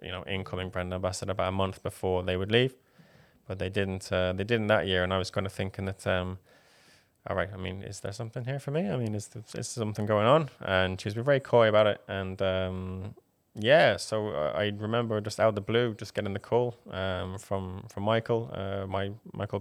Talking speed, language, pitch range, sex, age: 235 wpm, Finnish, 95-115 Hz, male, 20-39